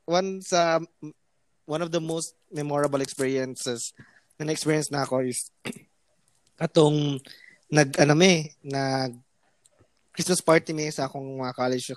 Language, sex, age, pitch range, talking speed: English, male, 20-39, 130-165 Hz, 120 wpm